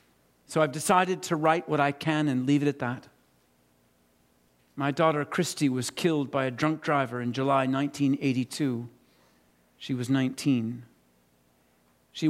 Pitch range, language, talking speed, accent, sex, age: 135-160 Hz, English, 140 wpm, American, male, 50-69